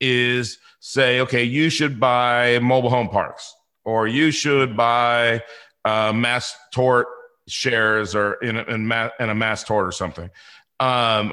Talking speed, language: 155 wpm, English